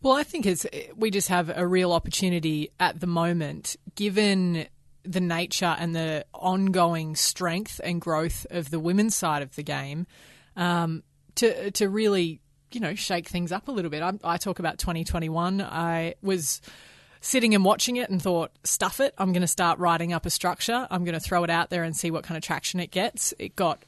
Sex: female